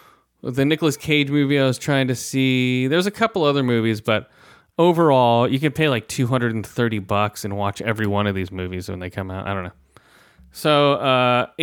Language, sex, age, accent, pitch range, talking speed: English, male, 30-49, American, 110-140 Hz, 195 wpm